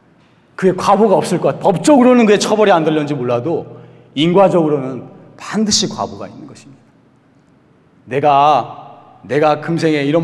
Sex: male